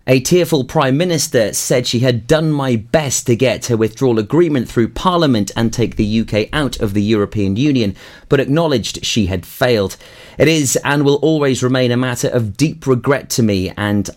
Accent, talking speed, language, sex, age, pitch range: British, 190 wpm, English, male, 30-49, 105-135 Hz